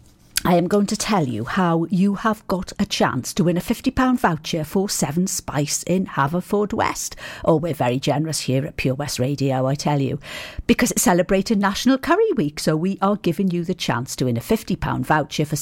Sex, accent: female, British